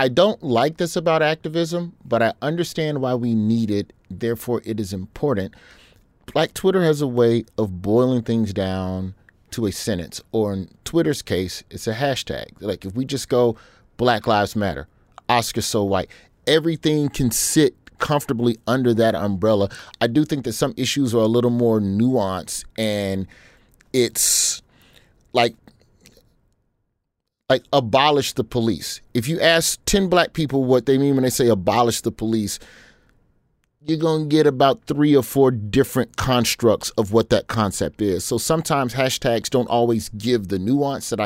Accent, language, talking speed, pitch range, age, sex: American, English, 160 wpm, 105-135 Hz, 30-49, male